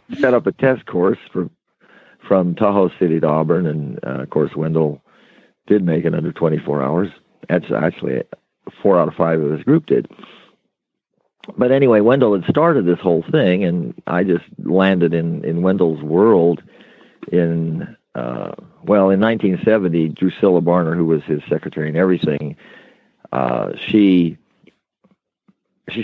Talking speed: 150 wpm